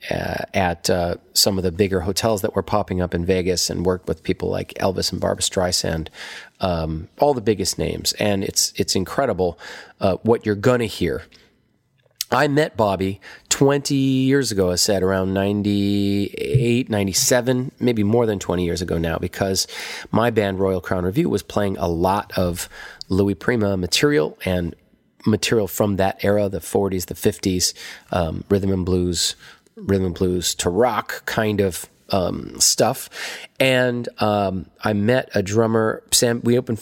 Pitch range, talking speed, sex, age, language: 90-110 Hz, 165 wpm, male, 30-49, English